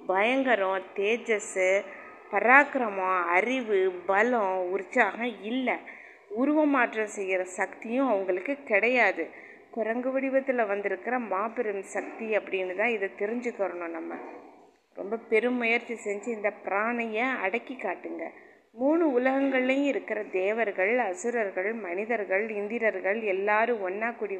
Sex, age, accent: female, 20-39, native